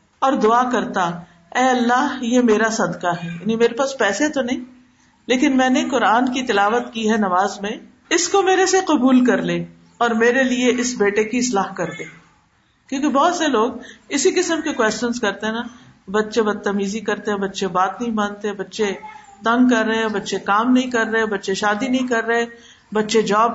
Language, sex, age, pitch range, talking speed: Urdu, female, 50-69, 195-240 Hz, 200 wpm